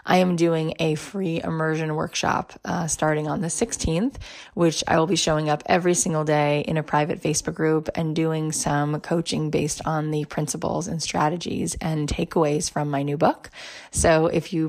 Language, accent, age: English, American, 20-39